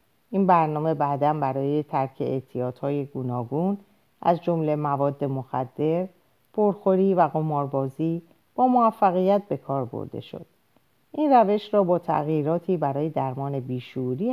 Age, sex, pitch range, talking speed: 50-69, female, 140-185 Hz, 115 wpm